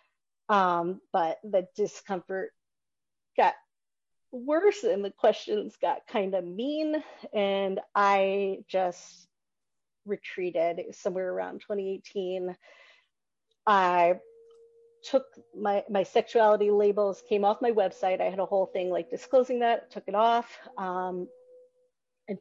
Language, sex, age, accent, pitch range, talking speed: English, female, 40-59, American, 195-260 Hz, 120 wpm